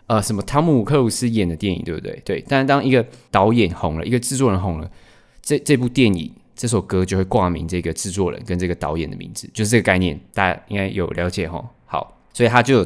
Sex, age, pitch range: male, 20-39, 90-110 Hz